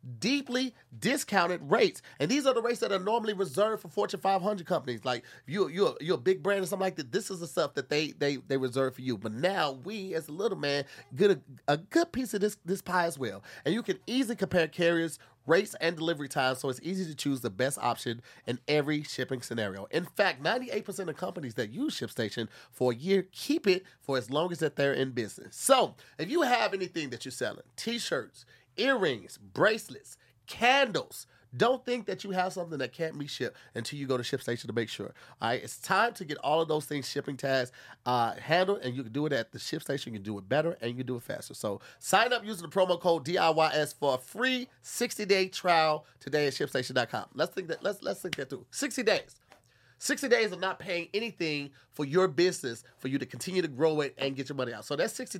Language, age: English, 30-49